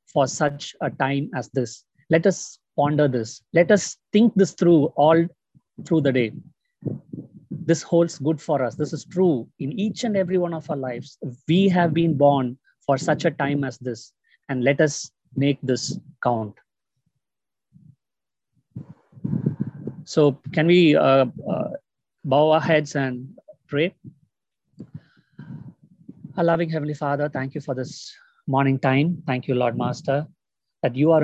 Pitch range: 135-165 Hz